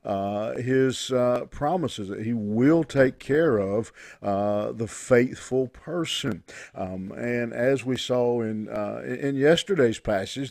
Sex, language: male, English